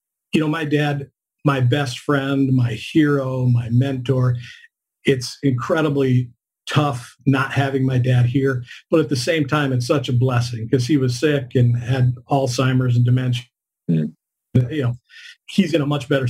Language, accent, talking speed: English, American, 160 wpm